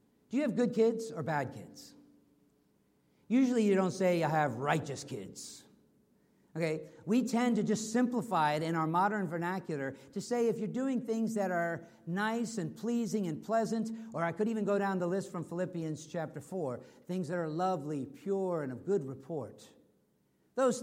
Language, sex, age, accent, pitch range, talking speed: English, male, 50-69, American, 160-225 Hz, 180 wpm